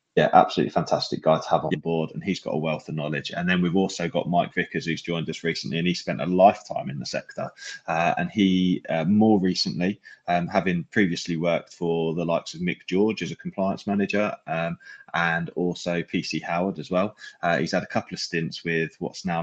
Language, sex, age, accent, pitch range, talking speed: English, male, 20-39, British, 80-100 Hz, 220 wpm